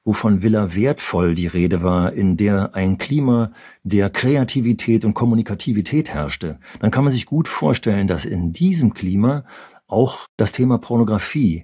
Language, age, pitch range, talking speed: German, 50-69, 95-125 Hz, 150 wpm